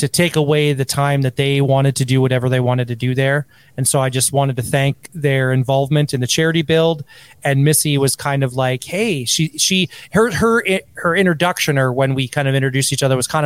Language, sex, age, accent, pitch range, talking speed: English, male, 30-49, American, 130-150 Hz, 230 wpm